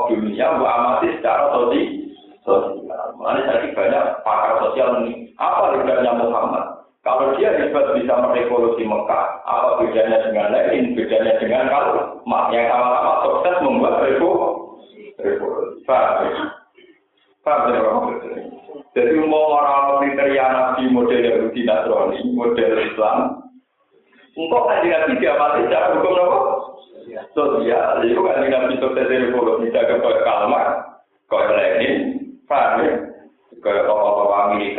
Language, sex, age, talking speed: Indonesian, male, 50-69, 90 wpm